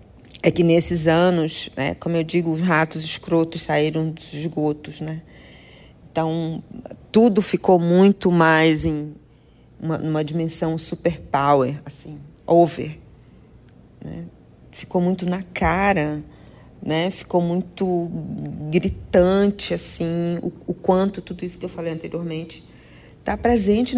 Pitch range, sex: 155-185 Hz, female